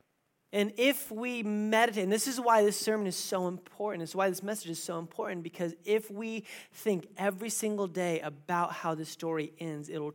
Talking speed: 195 wpm